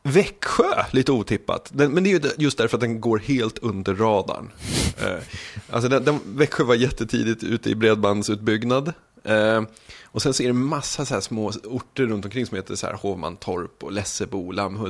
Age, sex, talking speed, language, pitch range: 20-39, male, 160 wpm, Swedish, 105-130 Hz